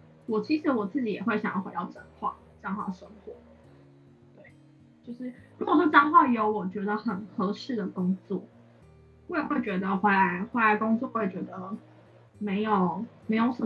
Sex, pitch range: female, 190-235 Hz